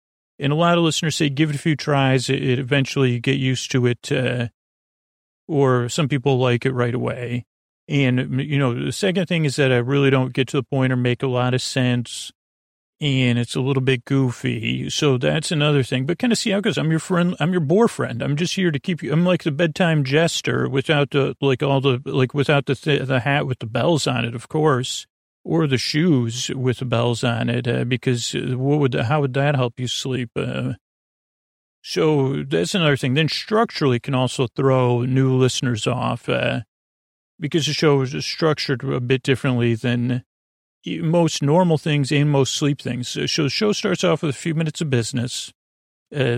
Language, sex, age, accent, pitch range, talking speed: English, male, 40-59, American, 125-150 Hz, 205 wpm